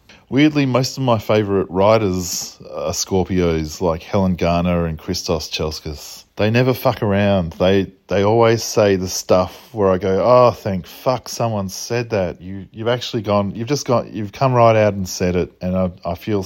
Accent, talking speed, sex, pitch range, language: Australian, 190 wpm, male, 85-100 Hz, English